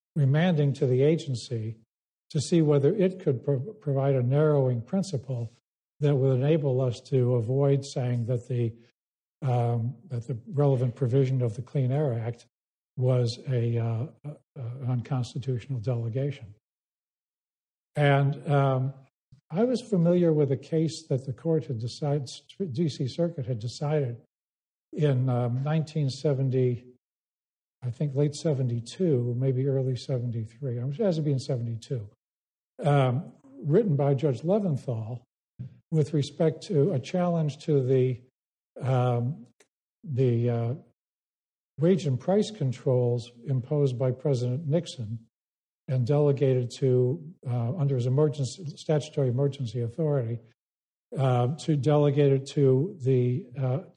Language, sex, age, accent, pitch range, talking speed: English, male, 50-69, American, 120-145 Hz, 130 wpm